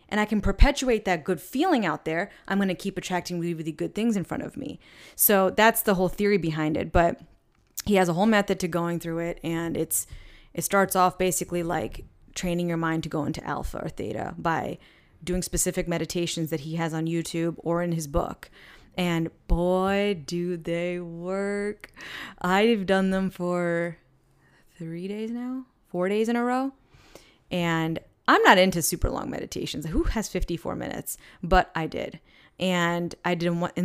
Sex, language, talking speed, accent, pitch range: female, English, 185 wpm, American, 170-205 Hz